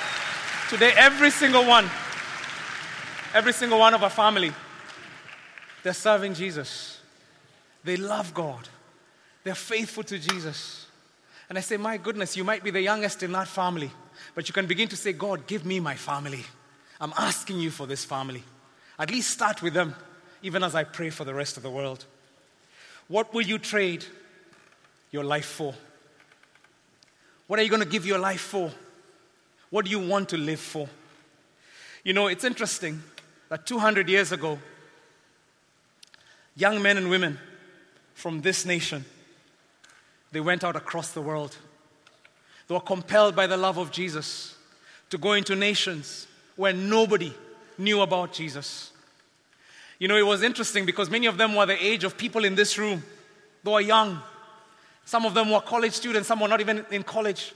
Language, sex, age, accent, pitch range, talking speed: English, male, 30-49, South African, 160-210 Hz, 165 wpm